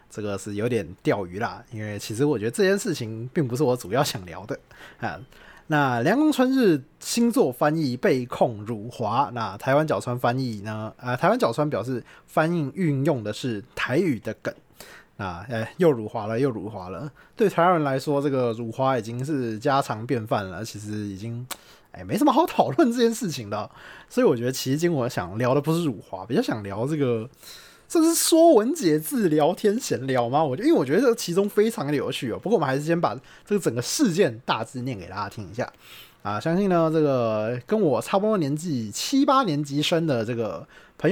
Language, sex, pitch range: Chinese, male, 115-180 Hz